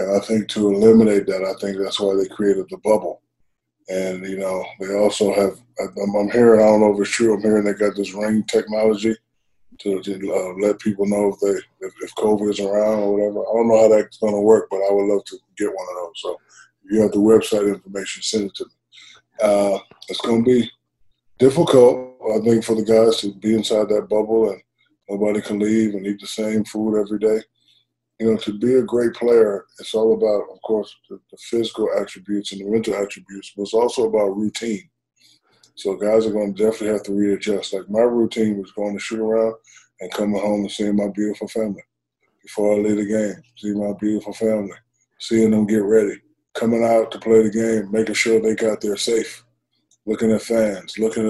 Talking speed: 210 wpm